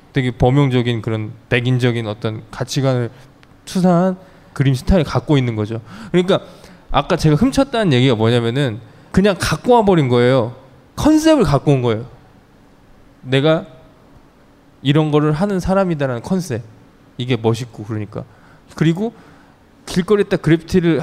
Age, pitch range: 20-39, 120-175 Hz